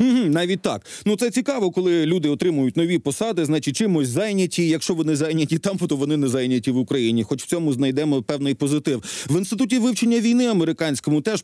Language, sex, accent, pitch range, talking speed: Ukrainian, male, native, 150-210 Hz, 185 wpm